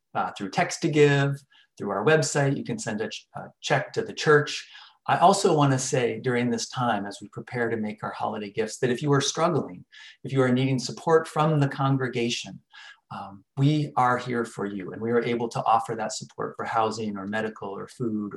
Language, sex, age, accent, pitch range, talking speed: English, male, 30-49, American, 115-140 Hz, 210 wpm